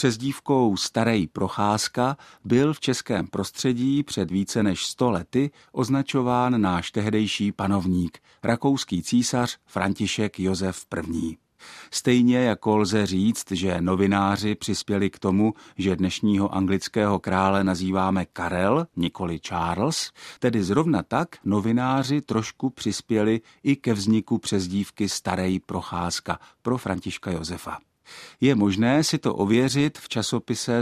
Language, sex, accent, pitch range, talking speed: Czech, male, native, 95-120 Hz, 115 wpm